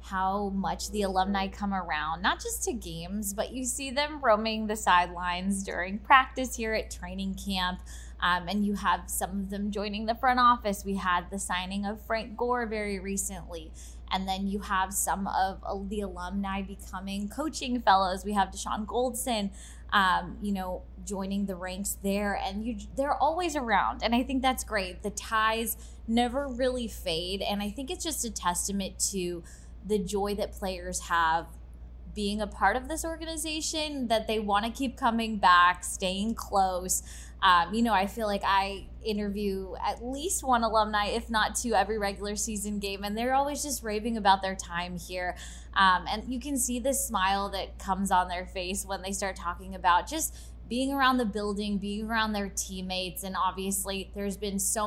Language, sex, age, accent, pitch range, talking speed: English, female, 10-29, American, 190-225 Hz, 185 wpm